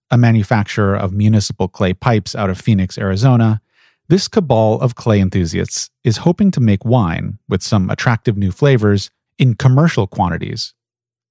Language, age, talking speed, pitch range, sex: English, 40-59, 150 wpm, 105-145 Hz, male